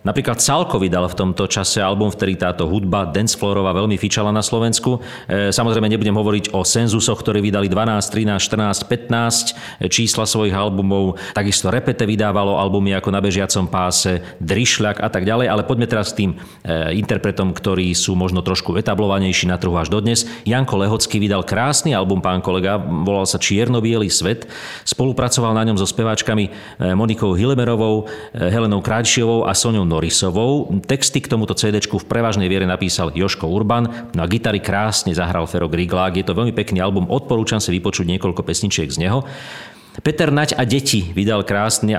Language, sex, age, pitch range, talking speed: Slovak, male, 40-59, 95-115 Hz, 165 wpm